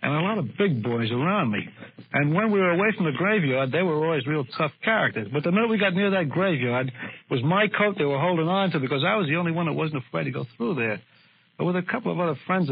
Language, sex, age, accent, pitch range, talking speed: English, male, 60-79, American, 130-175 Hz, 275 wpm